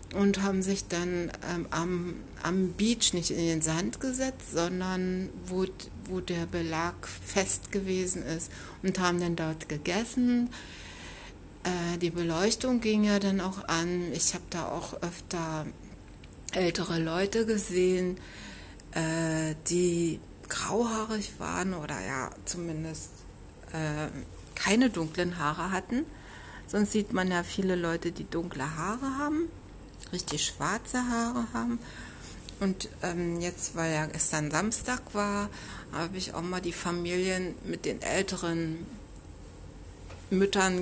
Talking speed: 125 wpm